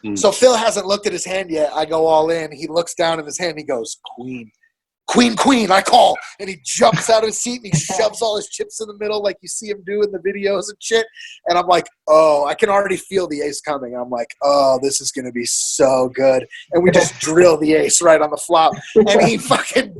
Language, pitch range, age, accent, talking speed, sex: English, 170-235 Hz, 20-39, American, 250 wpm, male